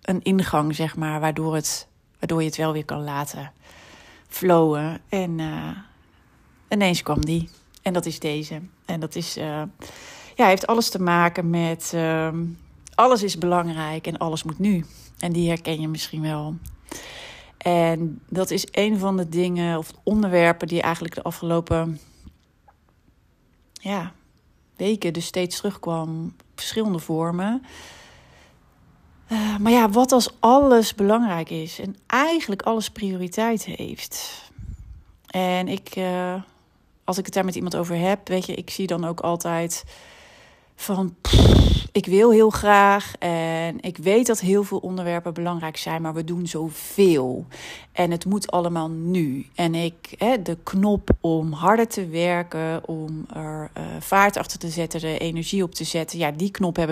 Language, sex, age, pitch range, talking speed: Dutch, female, 40-59, 160-195 Hz, 155 wpm